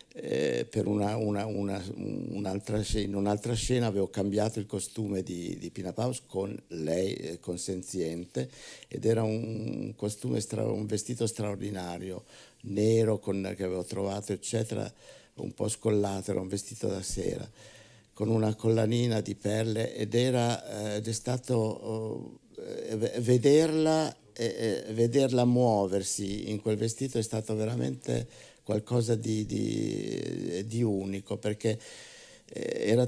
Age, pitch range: 60-79, 105-120 Hz